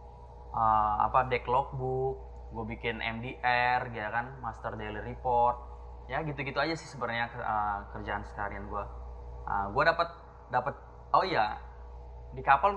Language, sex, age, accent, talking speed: Indonesian, male, 20-39, native, 150 wpm